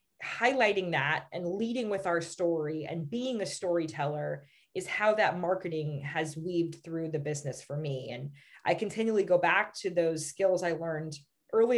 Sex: female